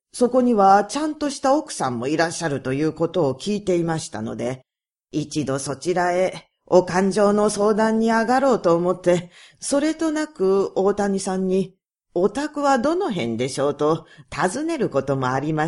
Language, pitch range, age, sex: Japanese, 155-245 Hz, 40-59, female